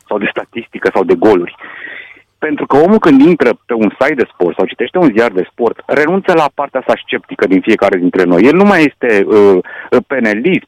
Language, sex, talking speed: Romanian, male, 210 wpm